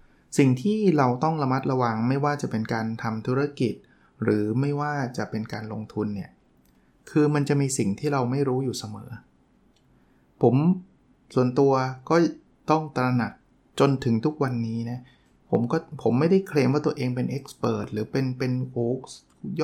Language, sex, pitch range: Thai, male, 120-150 Hz